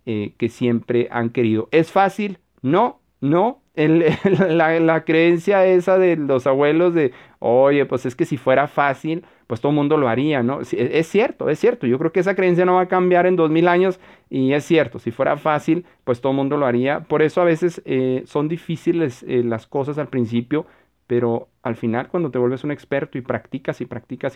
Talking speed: 205 wpm